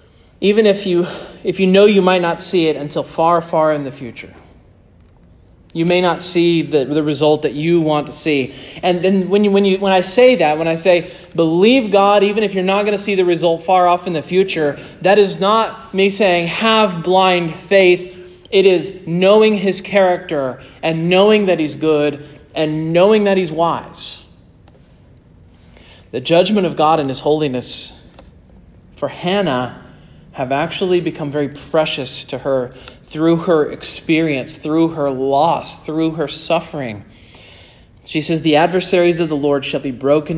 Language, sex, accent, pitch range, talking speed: English, male, American, 140-180 Hz, 170 wpm